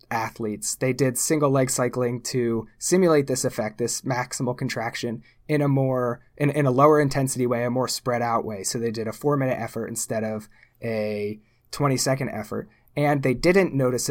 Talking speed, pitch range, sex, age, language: 185 wpm, 120-145 Hz, male, 20-39, English